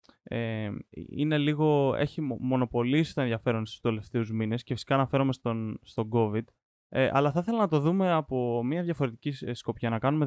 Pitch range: 115-145 Hz